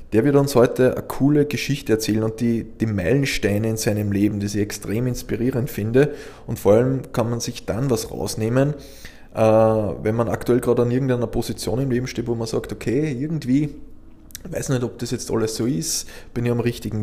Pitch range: 110-130 Hz